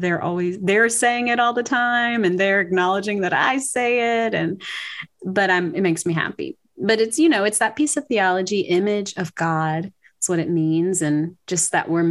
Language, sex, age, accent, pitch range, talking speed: English, female, 30-49, American, 165-195 Hz, 210 wpm